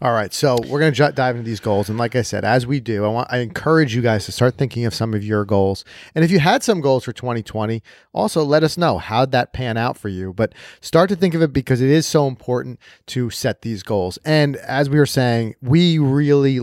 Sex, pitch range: male, 120-145 Hz